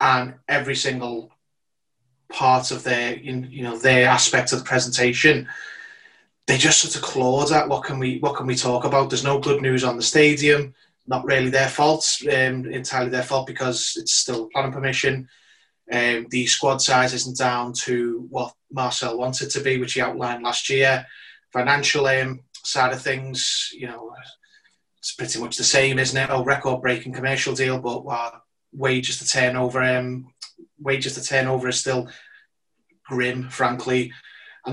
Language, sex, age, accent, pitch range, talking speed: English, male, 20-39, British, 125-135 Hz, 175 wpm